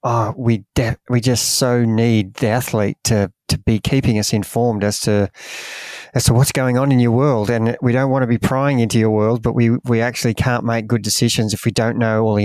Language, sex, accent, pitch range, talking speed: English, male, Australian, 110-125 Hz, 235 wpm